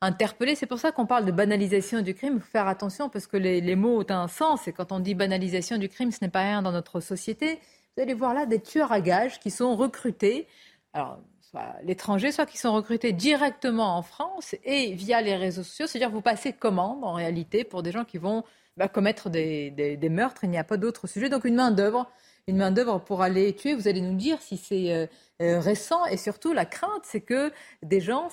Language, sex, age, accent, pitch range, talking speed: French, female, 40-59, French, 185-245 Hz, 230 wpm